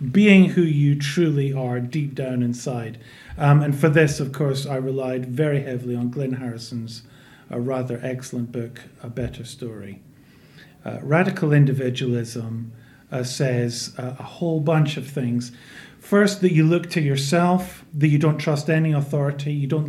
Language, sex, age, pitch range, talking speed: English, male, 40-59, 125-160 Hz, 160 wpm